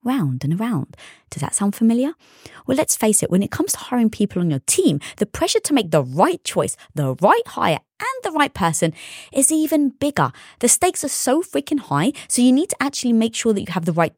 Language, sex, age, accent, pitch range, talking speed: English, female, 20-39, British, 195-295 Hz, 235 wpm